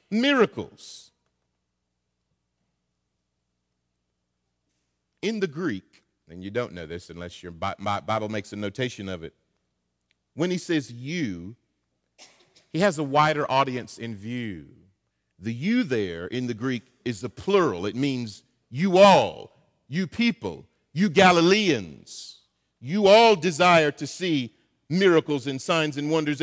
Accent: American